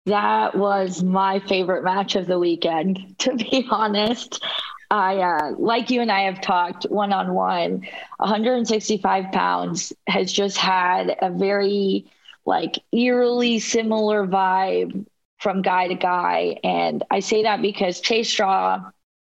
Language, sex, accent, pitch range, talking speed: English, female, American, 190-225 Hz, 130 wpm